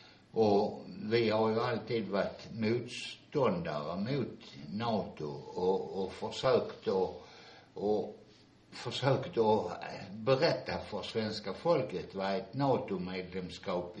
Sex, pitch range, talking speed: male, 95-120 Hz, 100 wpm